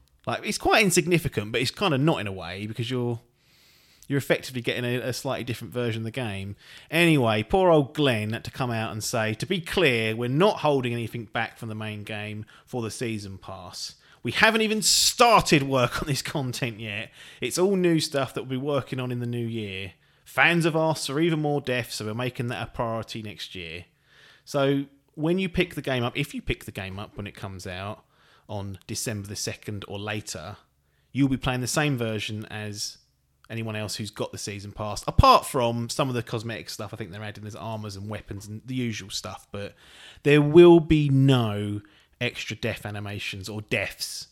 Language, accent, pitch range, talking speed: English, British, 105-135 Hz, 210 wpm